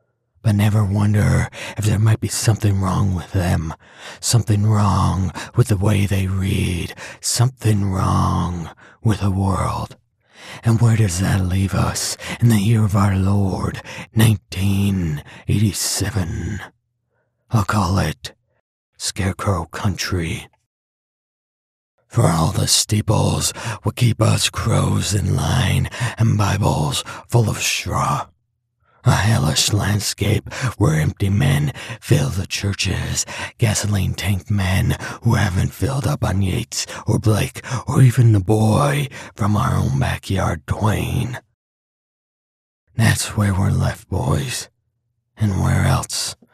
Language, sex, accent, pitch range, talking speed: English, male, American, 100-115 Hz, 120 wpm